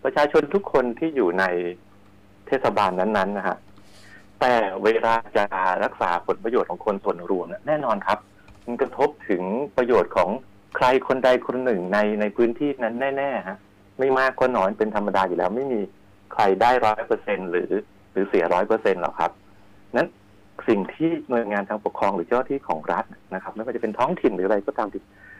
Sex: male